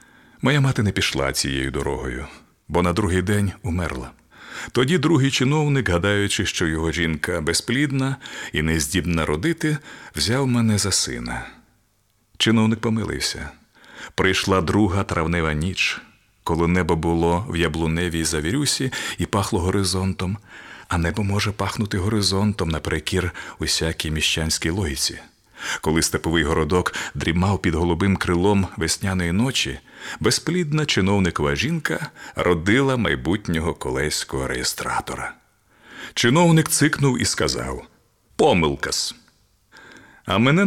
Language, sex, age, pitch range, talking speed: Ukrainian, male, 40-59, 80-110 Hz, 110 wpm